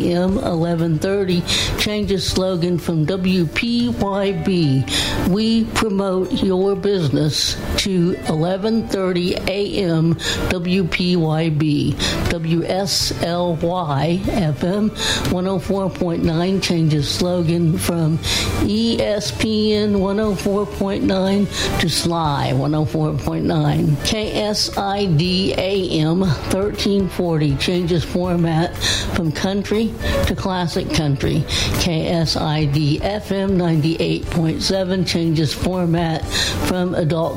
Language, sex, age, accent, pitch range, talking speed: English, female, 60-79, American, 155-190 Hz, 65 wpm